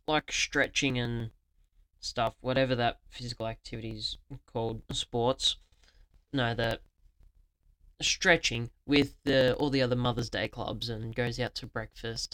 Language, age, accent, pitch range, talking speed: English, 10-29, Australian, 110-135 Hz, 130 wpm